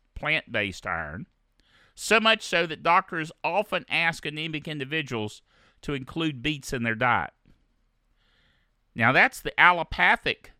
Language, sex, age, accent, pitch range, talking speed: English, male, 50-69, American, 135-180 Hz, 120 wpm